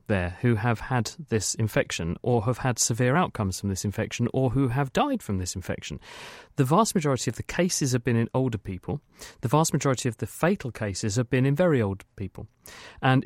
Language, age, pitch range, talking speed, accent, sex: English, 40-59, 105-130 Hz, 210 wpm, British, male